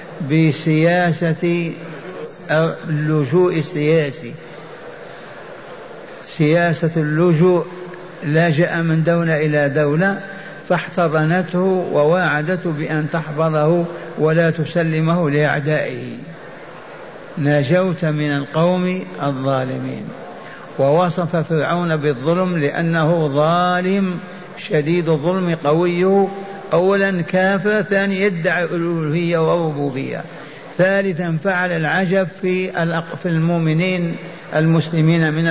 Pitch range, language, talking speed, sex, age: 155-180 Hz, Arabic, 70 wpm, male, 60-79